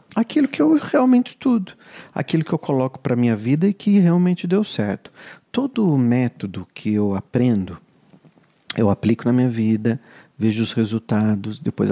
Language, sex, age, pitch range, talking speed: Portuguese, male, 40-59, 110-180 Hz, 160 wpm